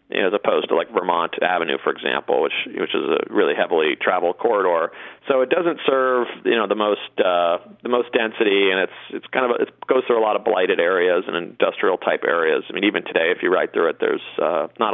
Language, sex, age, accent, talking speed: English, male, 30-49, American, 235 wpm